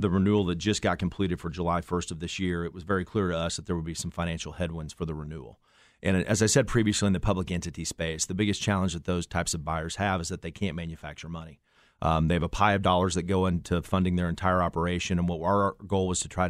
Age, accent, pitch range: 40-59, American, 85-100 Hz